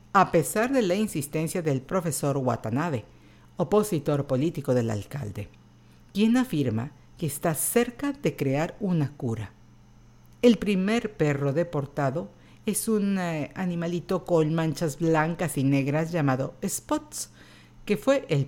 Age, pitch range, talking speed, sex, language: 50-69, 135-185 Hz, 125 wpm, female, Spanish